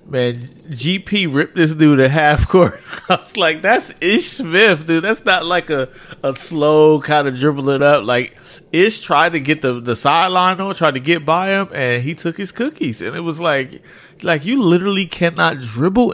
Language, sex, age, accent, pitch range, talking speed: English, male, 30-49, American, 110-160 Hz, 195 wpm